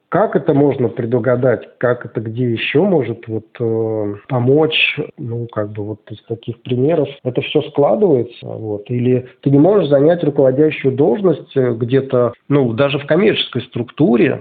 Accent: native